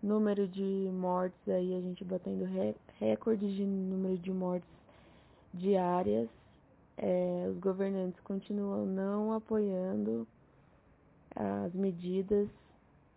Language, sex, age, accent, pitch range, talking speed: Portuguese, female, 20-39, Brazilian, 180-205 Hz, 90 wpm